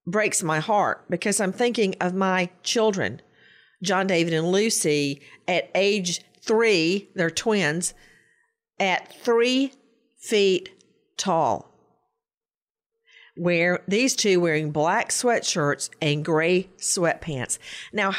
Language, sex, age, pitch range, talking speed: English, female, 50-69, 175-235 Hz, 105 wpm